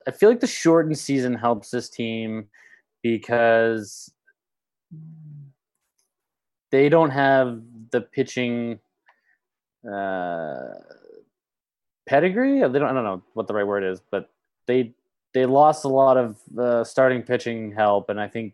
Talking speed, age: 125 wpm, 20-39